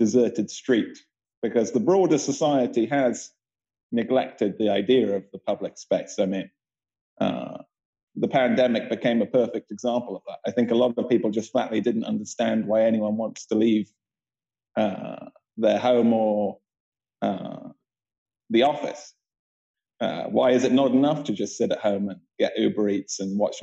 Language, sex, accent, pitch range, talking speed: English, male, British, 105-120 Hz, 165 wpm